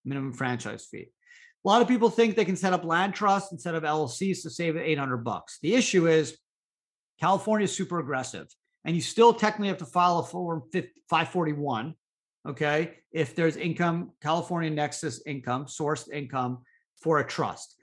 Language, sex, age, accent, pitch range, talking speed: English, male, 50-69, American, 150-195 Hz, 170 wpm